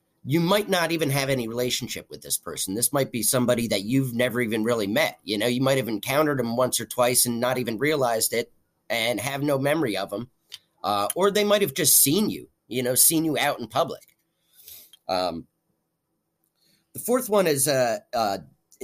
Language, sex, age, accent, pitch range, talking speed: English, male, 30-49, American, 110-140 Hz, 200 wpm